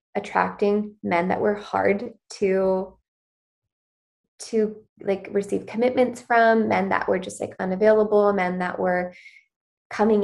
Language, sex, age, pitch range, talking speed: English, female, 20-39, 190-215 Hz, 125 wpm